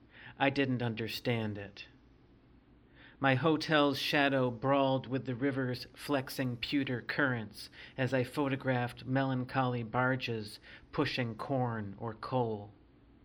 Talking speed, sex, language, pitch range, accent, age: 105 wpm, male, English, 120-145 Hz, American, 40-59